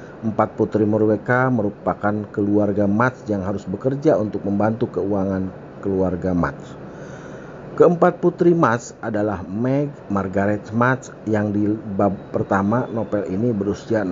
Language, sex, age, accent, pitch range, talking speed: Indonesian, male, 50-69, native, 100-125 Hz, 115 wpm